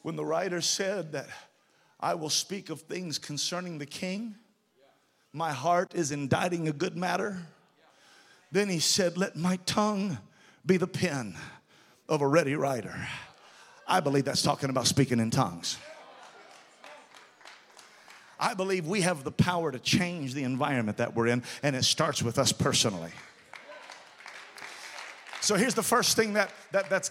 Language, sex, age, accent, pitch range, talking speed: English, male, 40-59, American, 165-240 Hz, 145 wpm